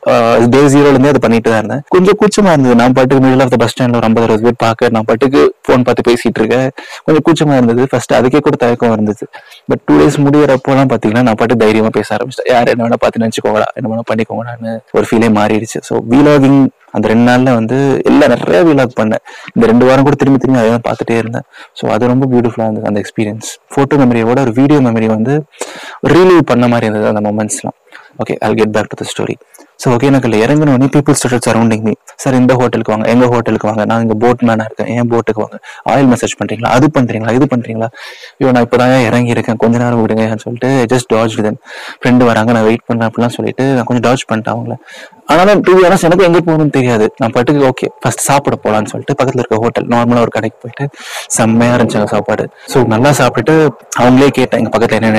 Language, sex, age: Tamil, male, 20-39